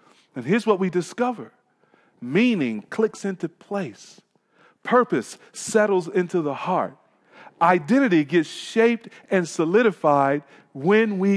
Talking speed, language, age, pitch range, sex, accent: 110 wpm, English, 40-59, 155-210 Hz, male, American